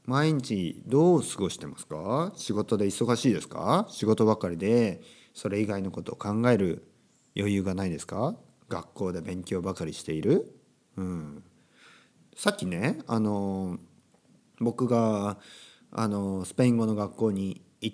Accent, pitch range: native, 95-125 Hz